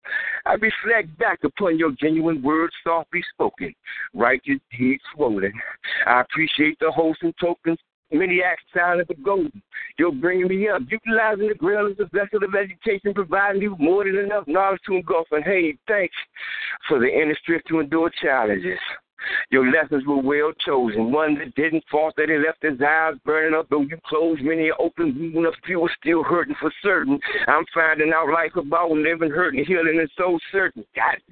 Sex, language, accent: male, English, American